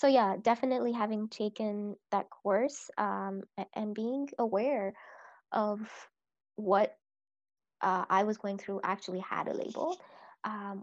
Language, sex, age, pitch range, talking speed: English, female, 20-39, 185-230 Hz, 125 wpm